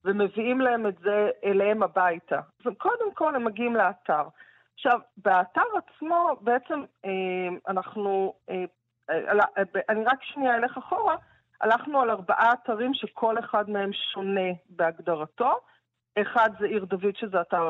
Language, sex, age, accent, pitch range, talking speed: Hebrew, female, 40-59, native, 185-255 Hz, 120 wpm